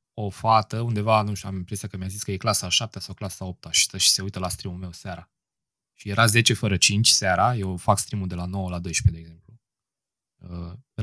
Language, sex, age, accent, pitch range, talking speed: Romanian, male, 20-39, native, 95-125 Hz, 245 wpm